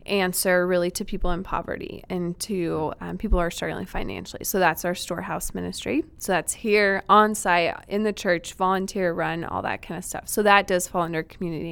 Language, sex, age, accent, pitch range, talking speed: English, female, 20-39, American, 180-225 Hz, 205 wpm